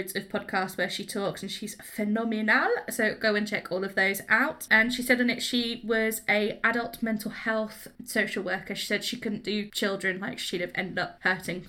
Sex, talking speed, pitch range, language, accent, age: female, 210 wpm, 205-245 Hz, English, British, 20-39